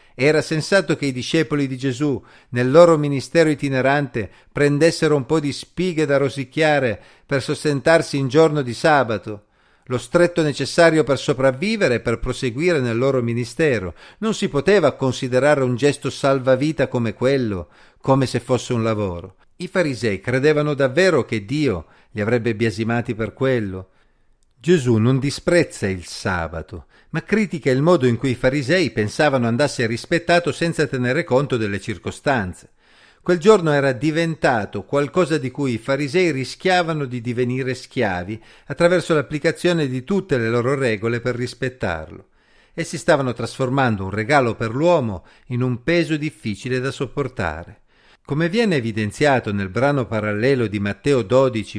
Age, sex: 50-69, male